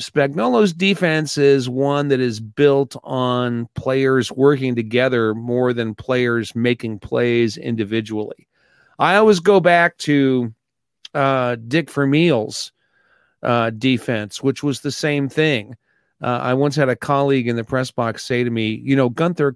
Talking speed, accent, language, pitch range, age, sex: 145 wpm, American, English, 120-150 Hz, 40-59, male